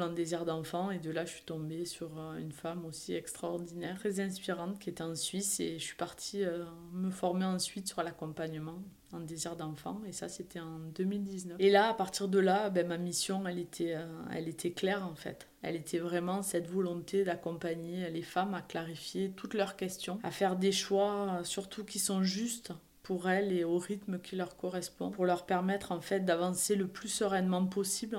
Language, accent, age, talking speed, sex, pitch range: French, French, 20-39, 200 wpm, female, 175-195 Hz